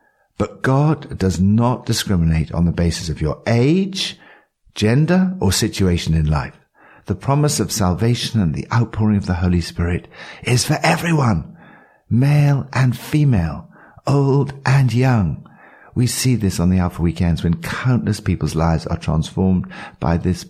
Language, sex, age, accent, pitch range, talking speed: English, male, 60-79, British, 85-125 Hz, 150 wpm